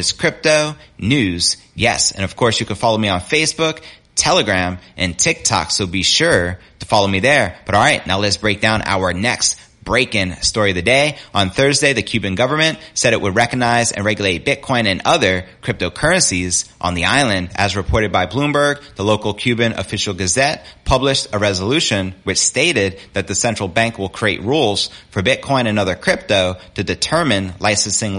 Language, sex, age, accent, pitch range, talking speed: English, male, 30-49, American, 95-130 Hz, 180 wpm